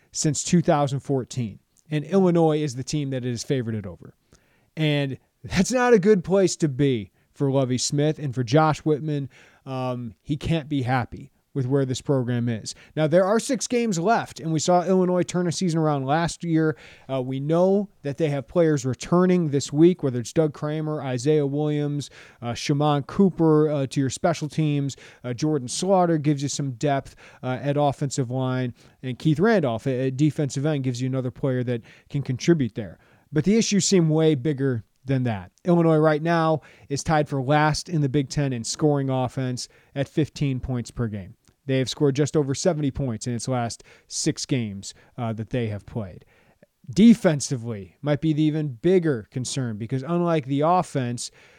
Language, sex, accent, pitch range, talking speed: English, male, American, 130-160 Hz, 185 wpm